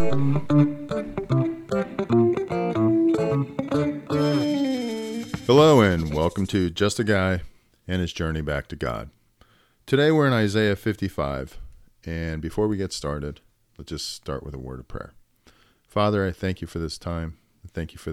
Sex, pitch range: male, 75-100 Hz